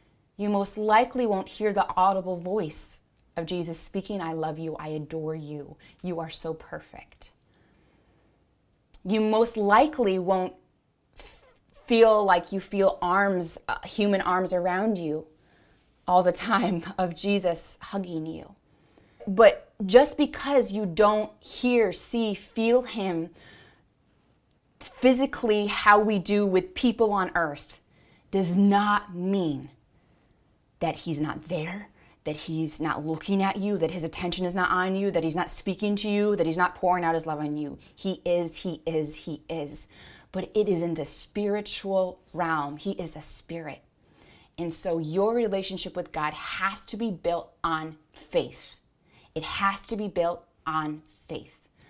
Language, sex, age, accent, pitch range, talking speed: English, female, 20-39, American, 160-205 Hz, 150 wpm